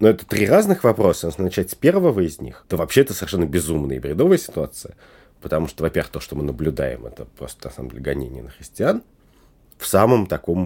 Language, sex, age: Russian, male, 30-49